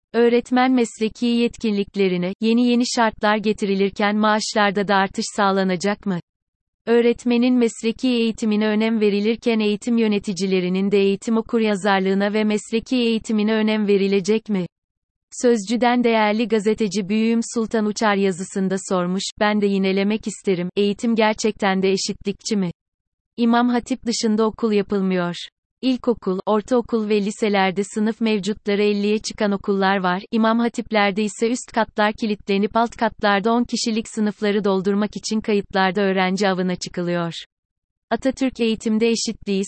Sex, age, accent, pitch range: female, 30-49, native, 200-230 Hz